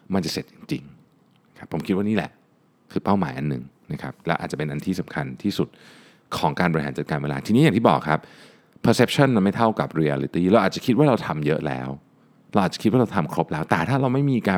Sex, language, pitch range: male, Thai, 75-100 Hz